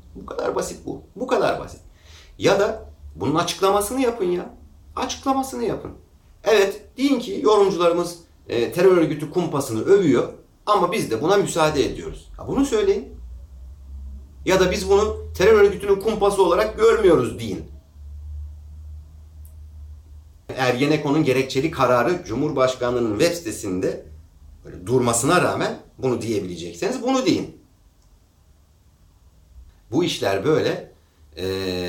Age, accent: 40-59, native